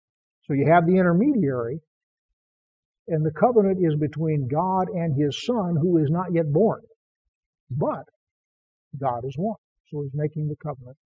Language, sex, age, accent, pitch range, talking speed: English, male, 50-69, American, 145-200 Hz, 150 wpm